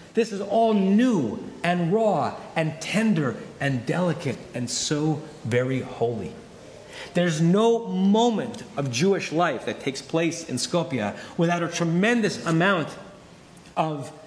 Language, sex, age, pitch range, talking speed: English, male, 30-49, 155-220 Hz, 125 wpm